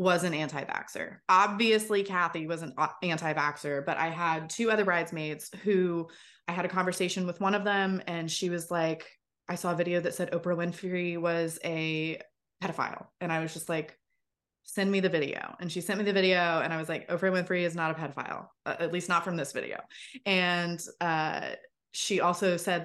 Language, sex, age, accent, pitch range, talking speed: English, female, 20-39, American, 165-190 Hz, 195 wpm